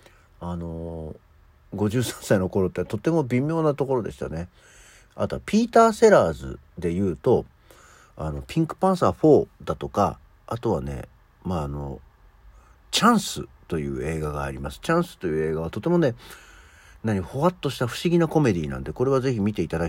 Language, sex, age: Japanese, male, 50-69